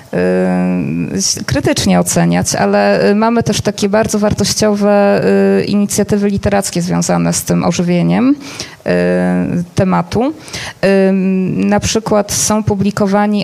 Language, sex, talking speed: Polish, female, 85 wpm